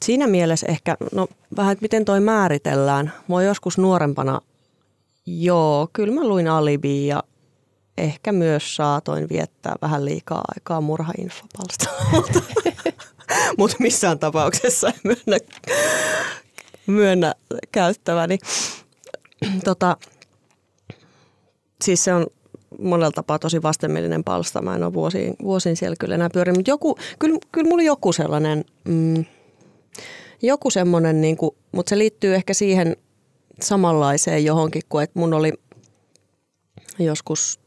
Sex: female